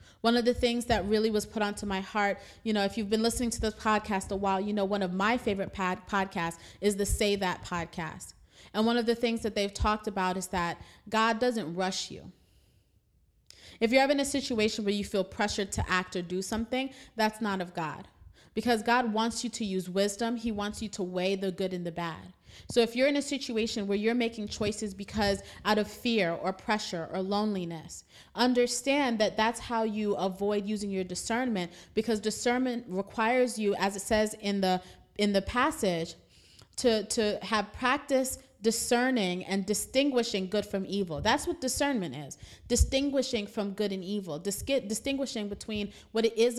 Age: 30-49